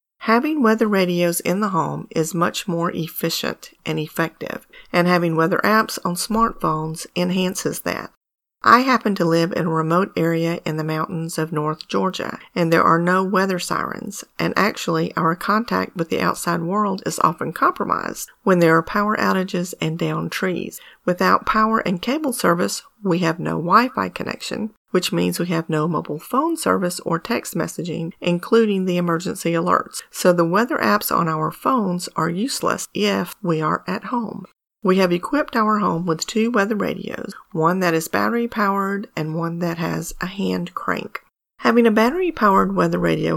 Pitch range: 165-215 Hz